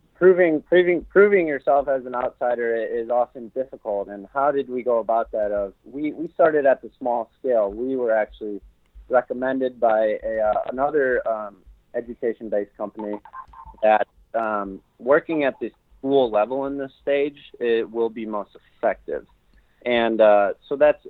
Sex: male